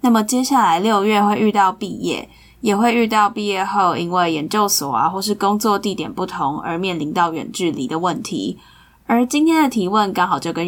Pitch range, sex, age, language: 175-215 Hz, female, 10-29, Chinese